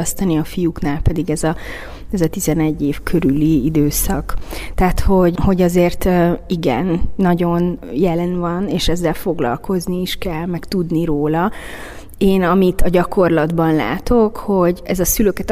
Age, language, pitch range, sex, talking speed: 30-49, Hungarian, 165-190 Hz, female, 135 wpm